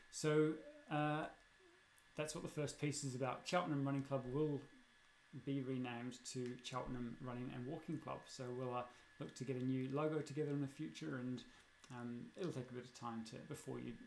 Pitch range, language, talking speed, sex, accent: 125-150 Hz, English, 190 wpm, male, British